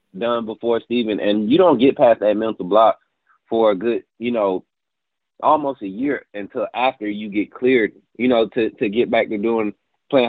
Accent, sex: American, male